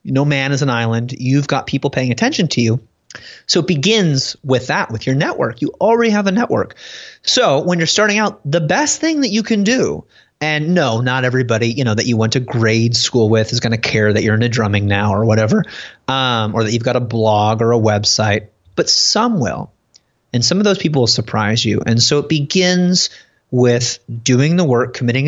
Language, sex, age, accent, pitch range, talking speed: English, male, 30-49, American, 115-155 Hz, 210 wpm